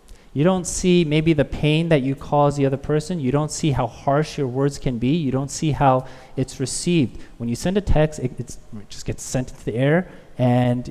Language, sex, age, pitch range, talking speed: English, male, 30-49, 135-165 Hz, 225 wpm